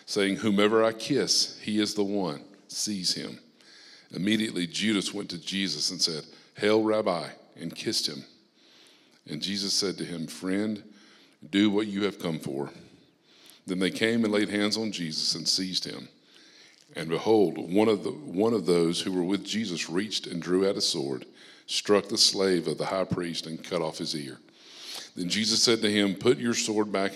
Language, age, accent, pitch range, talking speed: English, 50-69, American, 90-110 Hz, 185 wpm